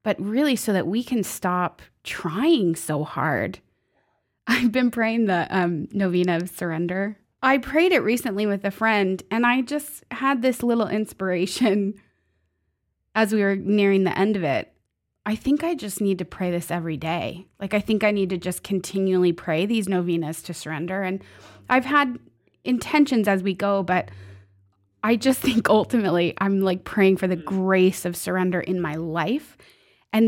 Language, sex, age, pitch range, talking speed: English, female, 20-39, 180-220 Hz, 170 wpm